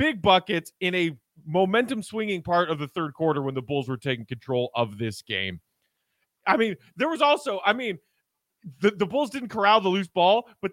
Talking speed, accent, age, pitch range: 205 wpm, American, 30-49, 160-235 Hz